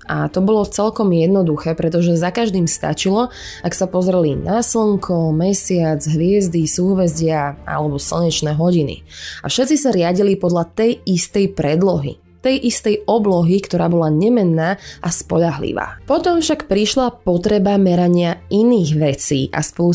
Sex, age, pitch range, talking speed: female, 20-39, 160-205 Hz, 135 wpm